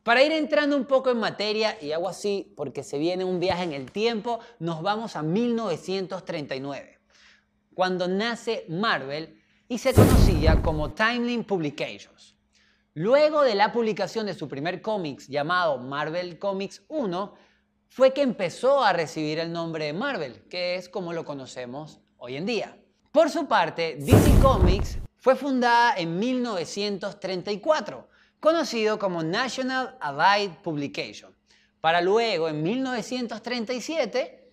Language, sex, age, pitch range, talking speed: Spanish, male, 20-39, 160-235 Hz, 135 wpm